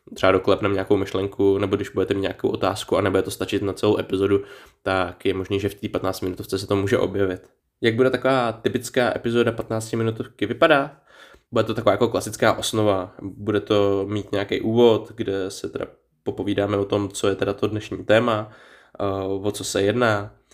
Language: Czech